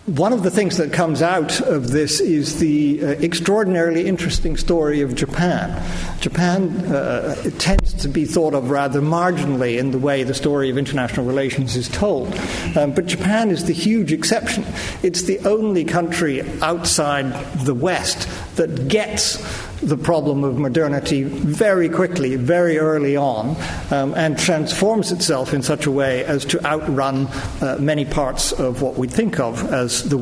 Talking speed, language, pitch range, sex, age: 165 wpm, English, 135-175 Hz, male, 50-69